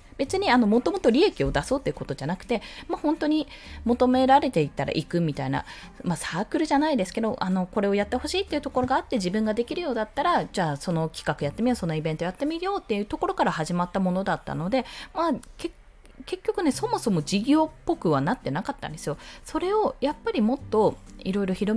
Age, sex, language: 20-39, female, Japanese